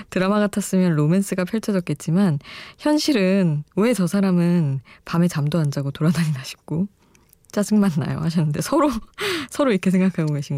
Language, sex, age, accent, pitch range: Korean, female, 20-39, native, 155-200 Hz